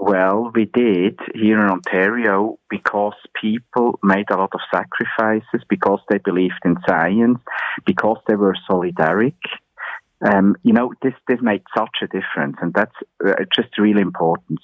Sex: male